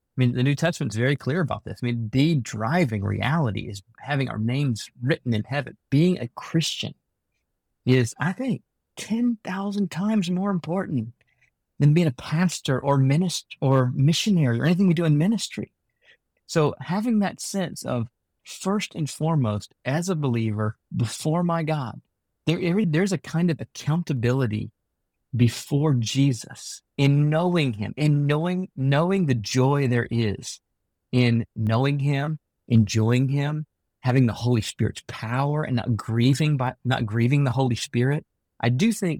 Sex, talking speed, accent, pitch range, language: male, 155 wpm, American, 115-155 Hz, English